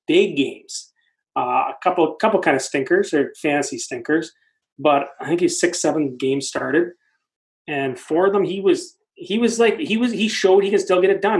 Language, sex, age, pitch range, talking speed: English, male, 30-49, 145-210 Hz, 200 wpm